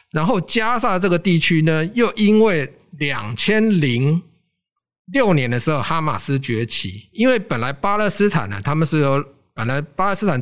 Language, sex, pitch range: Chinese, male, 120-180 Hz